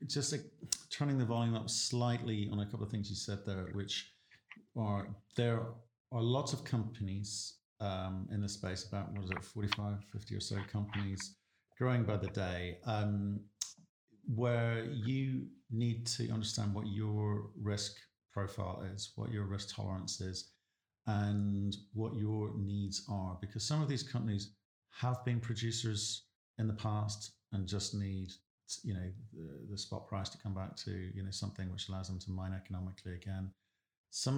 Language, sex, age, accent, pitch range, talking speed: English, male, 50-69, British, 95-110 Hz, 165 wpm